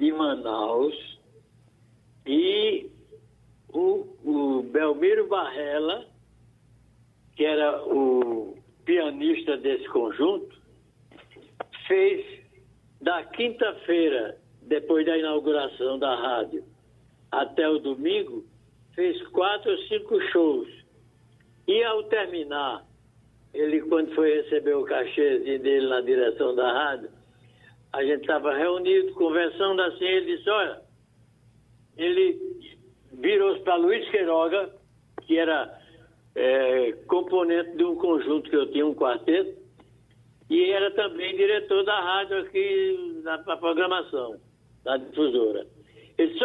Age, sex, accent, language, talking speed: 60-79, male, Brazilian, Portuguese, 105 wpm